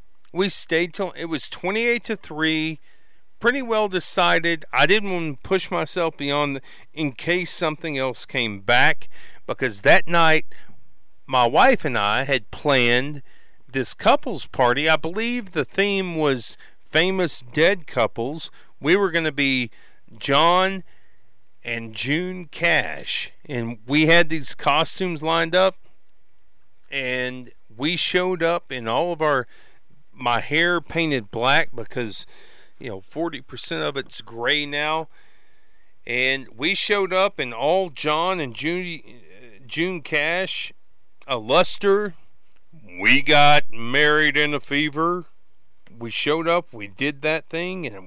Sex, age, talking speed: male, 40-59, 135 wpm